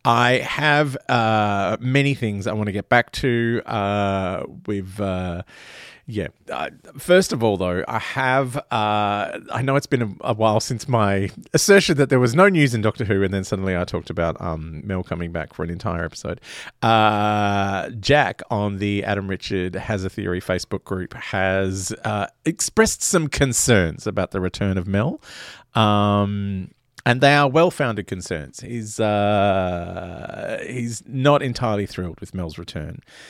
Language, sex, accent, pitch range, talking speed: English, male, Australian, 95-130 Hz, 165 wpm